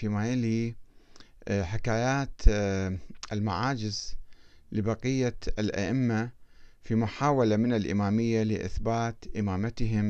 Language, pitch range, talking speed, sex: Arabic, 95-125 Hz, 70 wpm, male